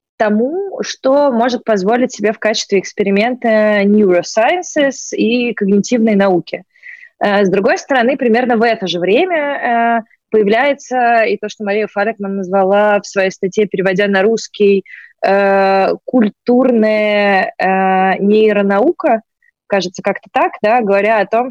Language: Russian